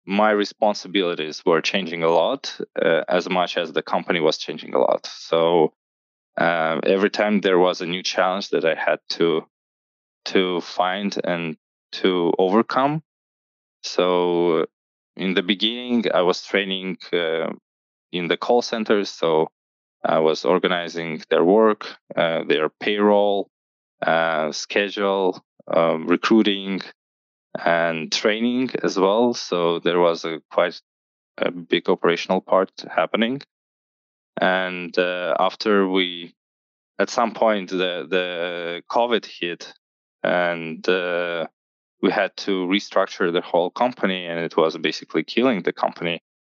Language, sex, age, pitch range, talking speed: English, male, 20-39, 80-100 Hz, 130 wpm